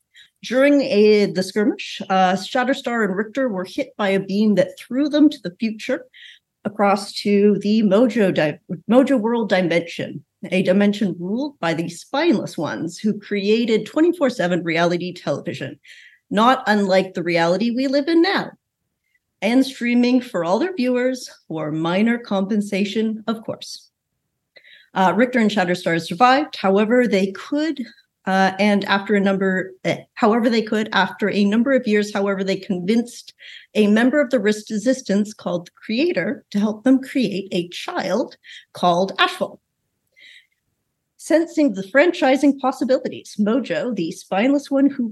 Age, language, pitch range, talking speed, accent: 40-59, English, 190-260 Hz, 140 wpm, American